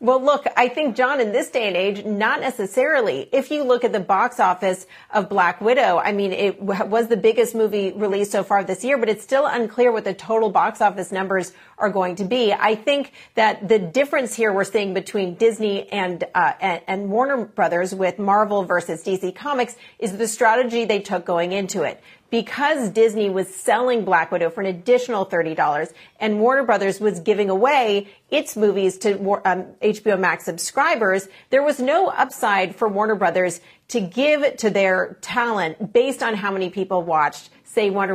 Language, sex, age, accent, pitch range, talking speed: English, female, 40-59, American, 190-235 Hz, 185 wpm